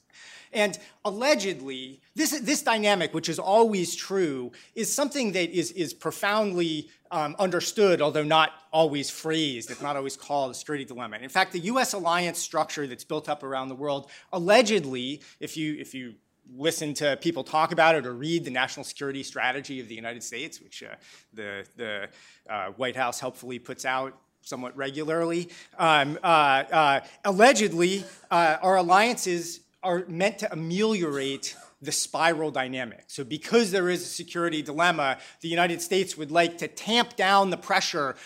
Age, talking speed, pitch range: 30-49, 165 wpm, 140-190 Hz